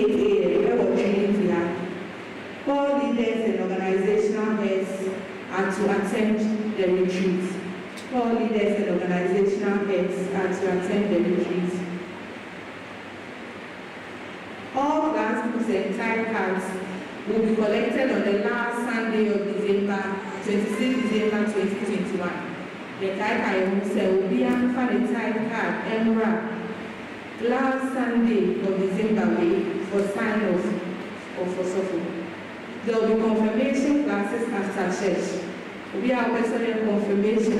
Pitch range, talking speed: 195-225 Hz, 115 wpm